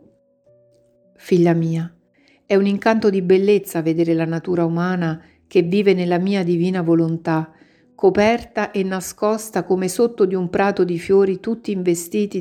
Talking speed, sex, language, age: 140 wpm, female, Italian, 50-69